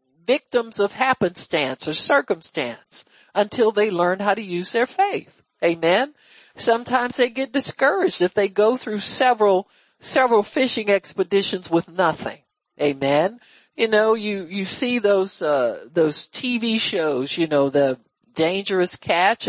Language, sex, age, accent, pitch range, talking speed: English, male, 50-69, American, 165-235 Hz, 135 wpm